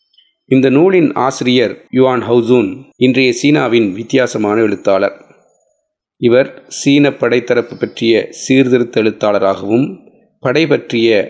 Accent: native